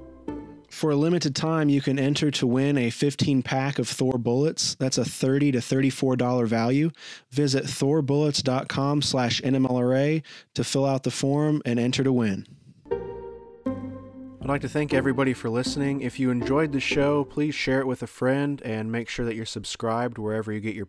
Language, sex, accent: English, male, American